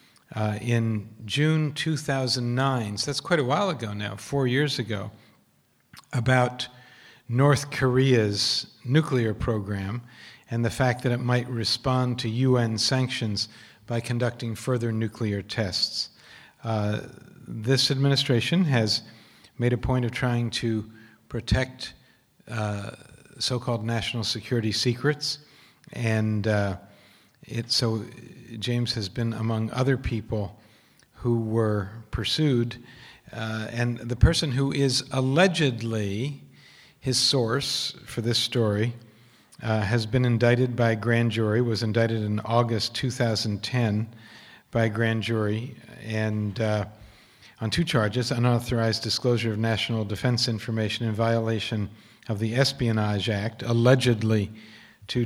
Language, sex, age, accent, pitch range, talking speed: English, male, 50-69, American, 110-125 Hz, 120 wpm